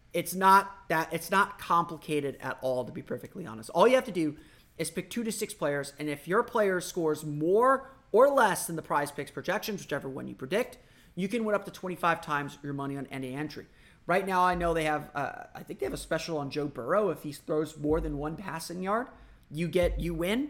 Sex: male